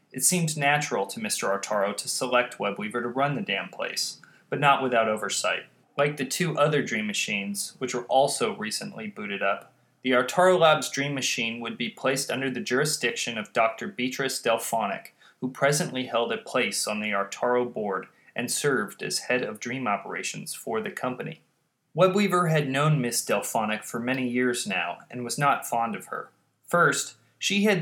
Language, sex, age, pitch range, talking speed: English, male, 30-49, 120-165 Hz, 175 wpm